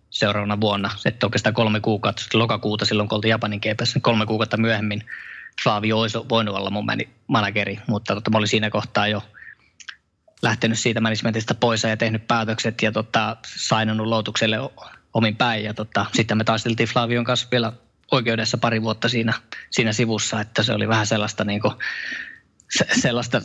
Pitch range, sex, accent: 110-120 Hz, male, native